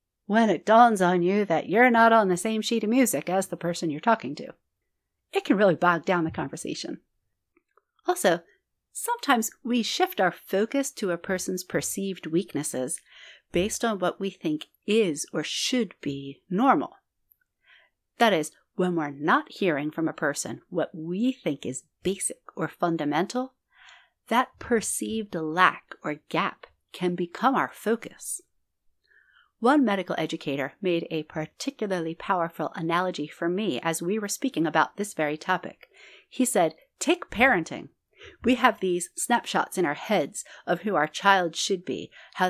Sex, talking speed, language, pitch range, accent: female, 155 wpm, English, 165-230 Hz, American